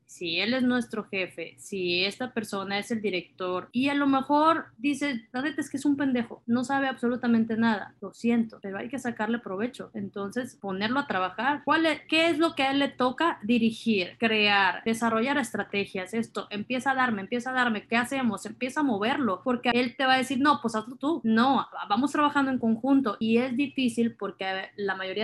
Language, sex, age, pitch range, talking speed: Spanish, female, 20-39, 195-255 Hz, 200 wpm